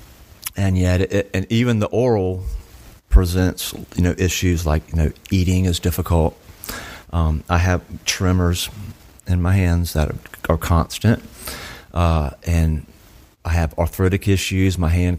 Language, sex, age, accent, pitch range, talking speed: English, male, 40-59, American, 80-95 Hz, 140 wpm